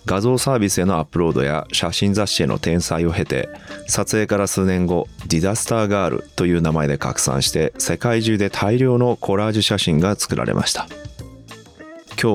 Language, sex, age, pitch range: Japanese, male, 30-49, 85-120 Hz